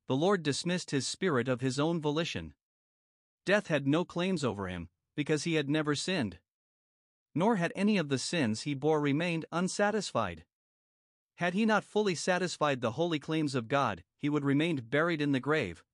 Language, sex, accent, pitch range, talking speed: English, male, American, 130-175 Hz, 175 wpm